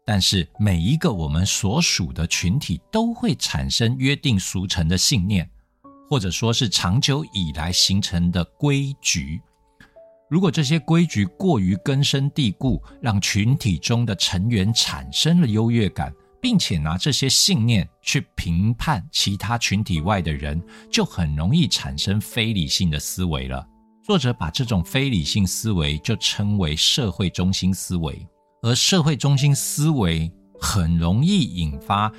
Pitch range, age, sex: 90-140 Hz, 60-79, male